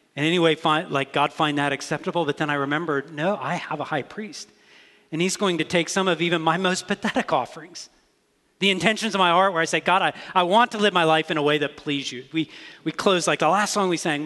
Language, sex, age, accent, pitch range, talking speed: English, male, 40-59, American, 125-170 Hz, 255 wpm